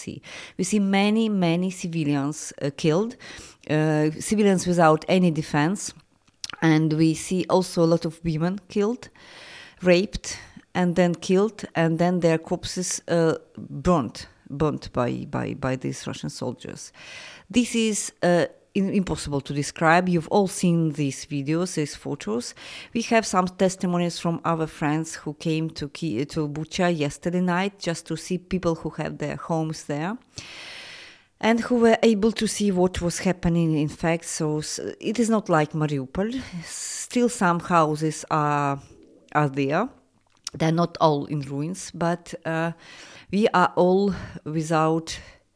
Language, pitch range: English, 145-180 Hz